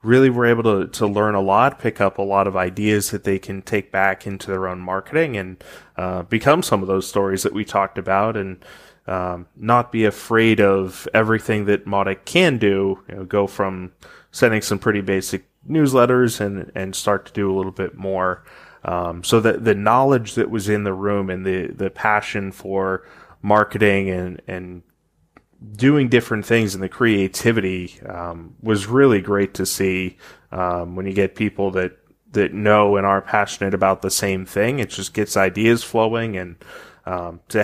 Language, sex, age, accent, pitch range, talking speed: English, male, 20-39, American, 95-110 Hz, 185 wpm